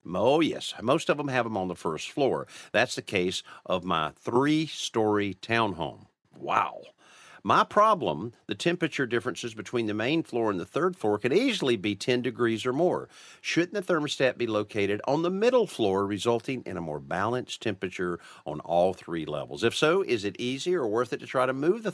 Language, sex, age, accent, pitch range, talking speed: English, male, 50-69, American, 95-130 Hz, 195 wpm